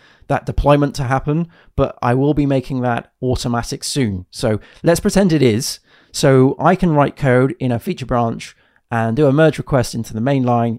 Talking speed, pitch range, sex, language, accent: 190 wpm, 115-140 Hz, male, English, British